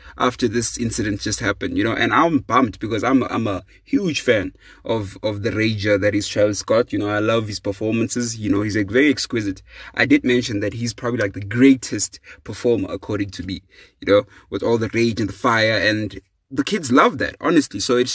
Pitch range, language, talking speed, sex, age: 110-125 Hz, English, 225 wpm, male, 20-39